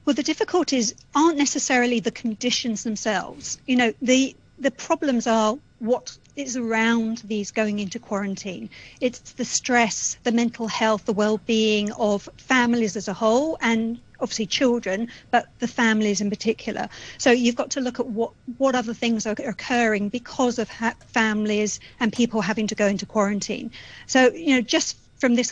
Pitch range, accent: 215-245 Hz, British